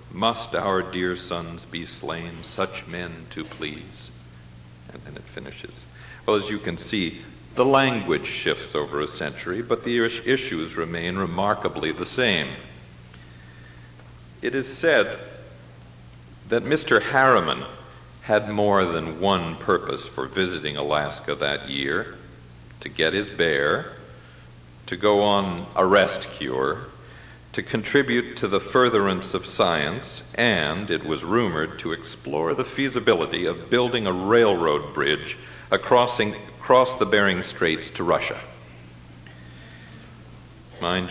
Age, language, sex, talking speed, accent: 60-79, English, male, 125 wpm, American